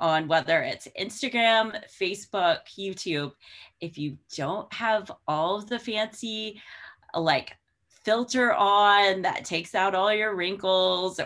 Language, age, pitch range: English, 30-49, 165-220 Hz